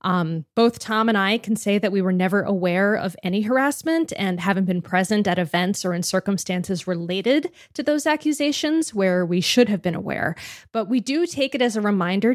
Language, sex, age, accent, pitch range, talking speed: English, female, 20-39, American, 180-220 Hz, 205 wpm